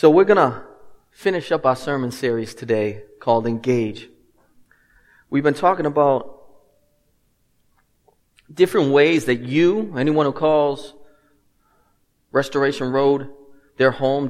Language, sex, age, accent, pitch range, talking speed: English, male, 30-49, American, 130-155 Hz, 115 wpm